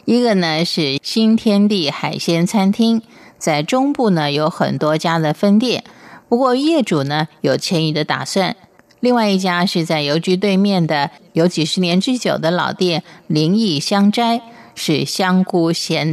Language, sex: Chinese, female